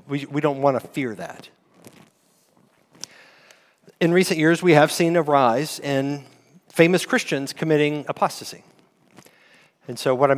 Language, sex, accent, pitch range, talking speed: English, male, American, 135-165 Hz, 140 wpm